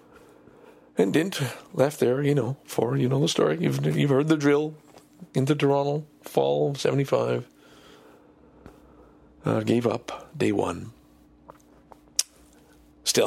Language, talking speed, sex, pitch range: English, 120 wpm, male, 115-170 Hz